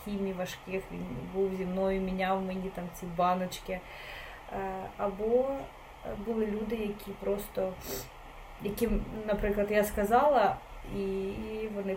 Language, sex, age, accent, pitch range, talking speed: Ukrainian, female, 20-39, native, 190-215 Hz, 105 wpm